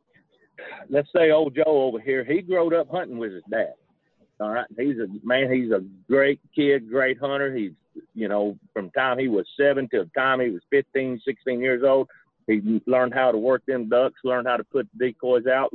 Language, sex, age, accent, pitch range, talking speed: English, male, 40-59, American, 115-145 Hz, 210 wpm